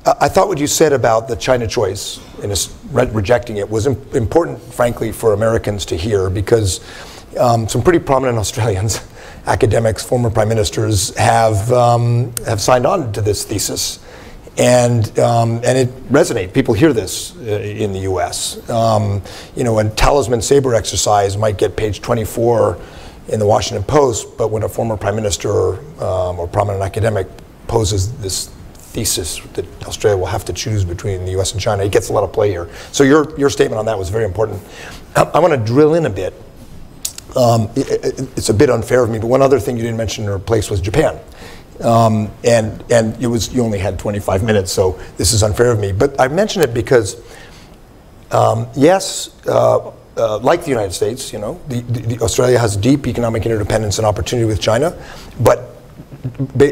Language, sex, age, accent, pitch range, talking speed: English, male, 40-59, American, 105-125 Hz, 190 wpm